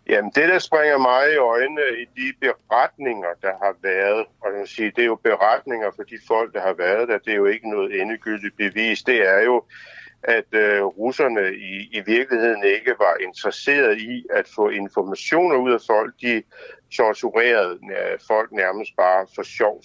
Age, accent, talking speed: 60-79, native, 170 wpm